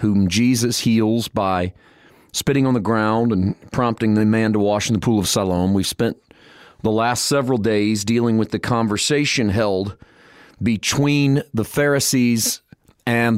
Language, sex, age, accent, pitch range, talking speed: English, male, 40-59, American, 110-145 Hz, 155 wpm